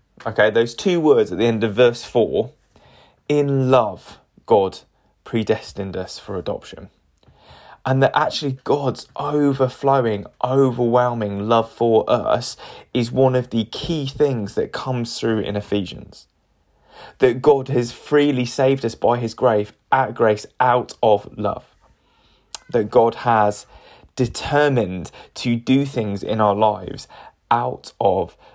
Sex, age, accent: male, 20-39, British